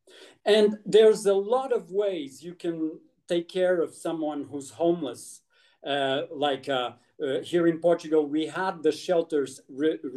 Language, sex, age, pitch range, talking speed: English, male, 40-59, 155-195 Hz, 155 wpm